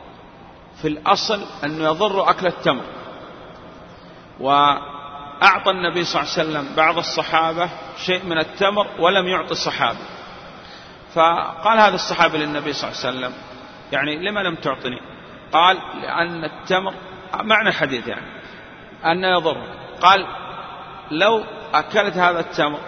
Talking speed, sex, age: 120 wpm, male, 40-59